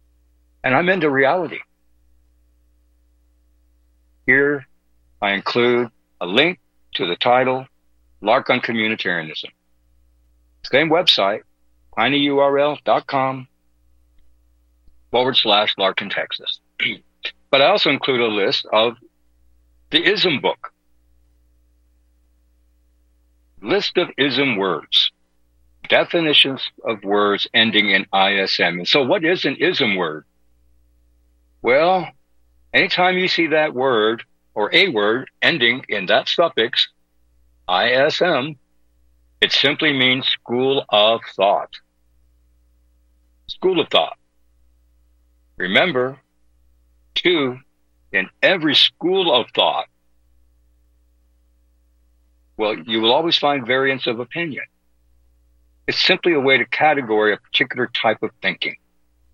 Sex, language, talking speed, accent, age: male, English, 100 wpm, American, 60-79